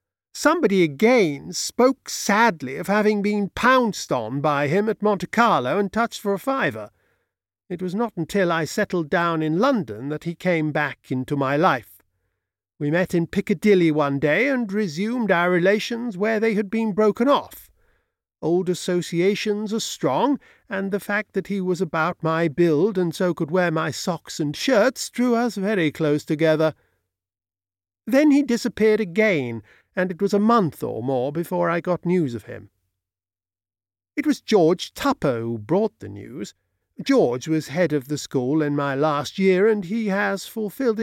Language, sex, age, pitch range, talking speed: English, male, 50-69, 150-215 Hz, 170 wpm